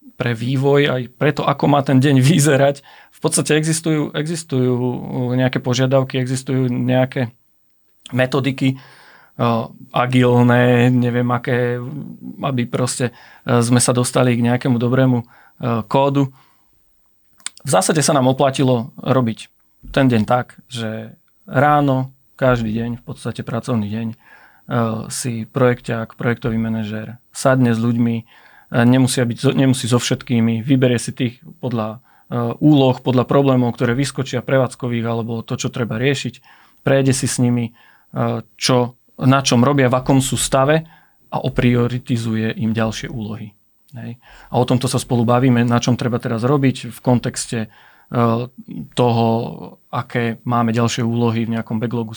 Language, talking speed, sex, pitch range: Slovak, 135 wpm, male, 120-135 Hz